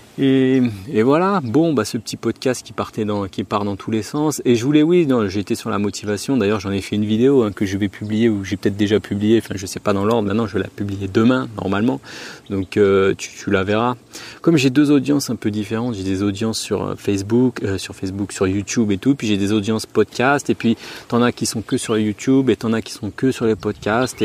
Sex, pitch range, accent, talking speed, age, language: male, 105-130 Hz, French, 255 wpm, 30-49, French